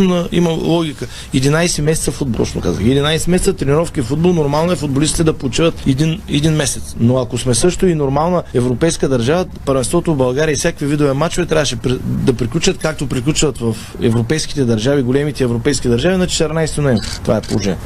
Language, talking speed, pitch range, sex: Bulgarian, 170 wpm, 130-165 Hz, male